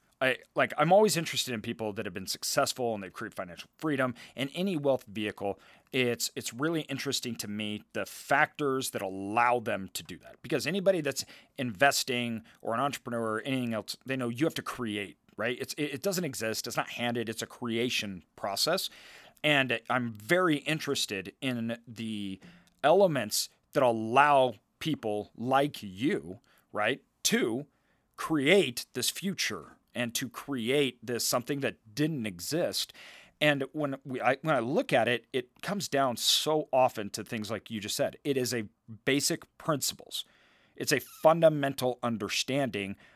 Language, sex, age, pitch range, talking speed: English, male, 40-59, 110-140 Hz, 165 wpm